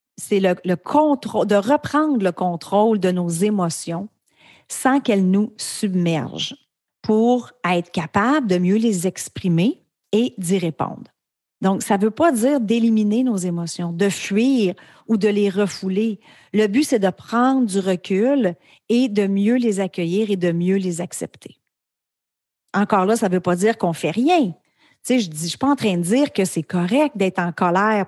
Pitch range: 180-230 Hz